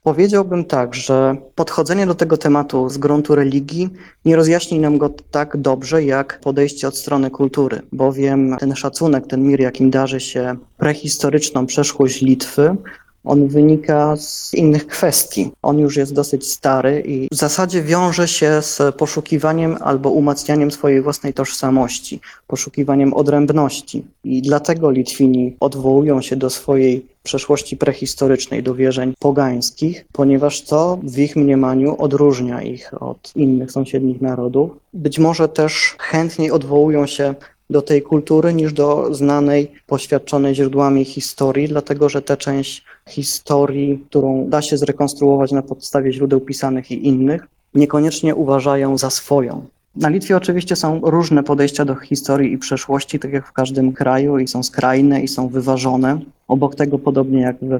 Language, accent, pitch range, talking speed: Polish, native, 130-150 Hz, 145 wpm